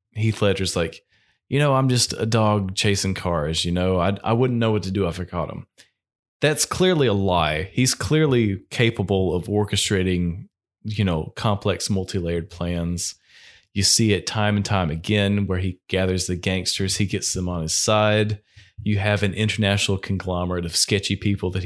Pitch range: 95-110 Hz